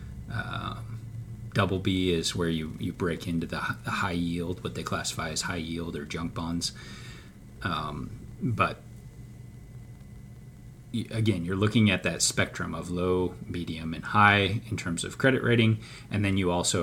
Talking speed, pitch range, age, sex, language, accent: 155 wpm, 85-115 Hz, 30-49, male, English, American